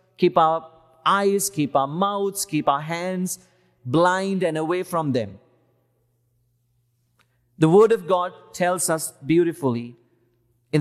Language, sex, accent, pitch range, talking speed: English, male, Indian, 125-200 Hz, 120 wpm